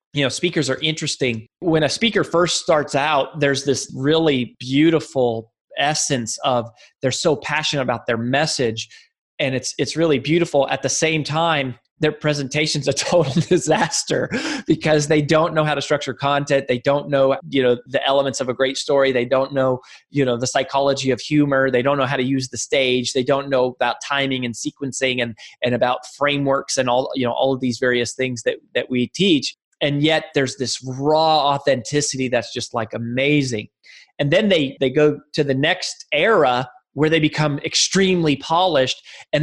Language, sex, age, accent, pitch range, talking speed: English, male, 20-39, American, 130-155 Hz, 185 wpm